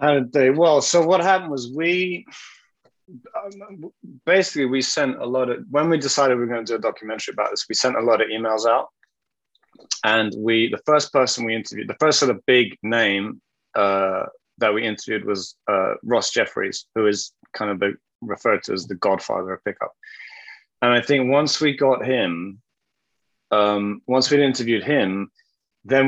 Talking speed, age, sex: 180 wpm, 30-49, male